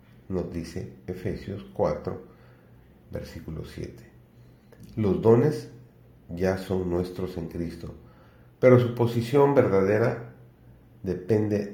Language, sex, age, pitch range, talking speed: Spanish, male, 40-59, 85-105 Hz, 90 wpm